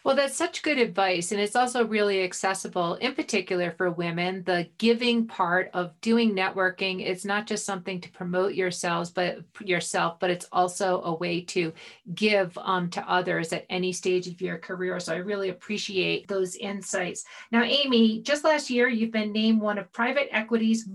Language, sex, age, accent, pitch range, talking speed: English, female, 40-59, American, 180-215 Hz, 180 wpm